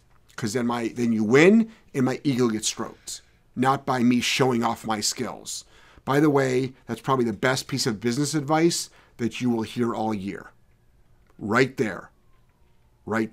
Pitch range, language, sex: 110-140 Hz, English, male